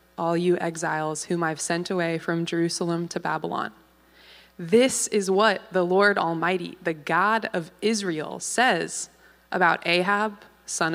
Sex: female